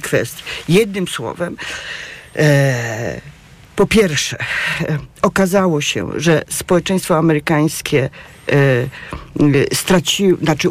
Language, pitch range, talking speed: Polish, 145-170 Hz, 85 wpm